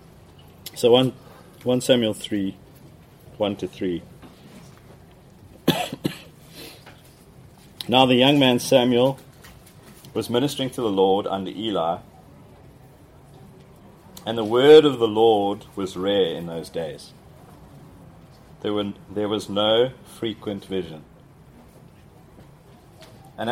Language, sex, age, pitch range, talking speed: English, male, 30-49, 100-130 Hz, 100 wpm